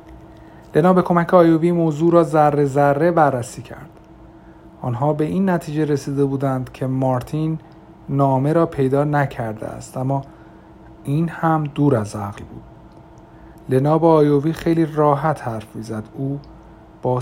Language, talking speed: Persian, 135 wpm